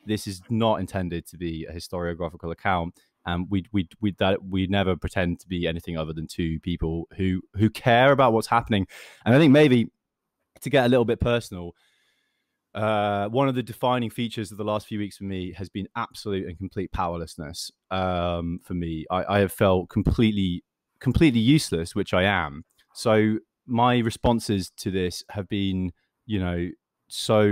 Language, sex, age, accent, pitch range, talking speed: English, male, 20-39, British, 90-110 Hz, 180 wpm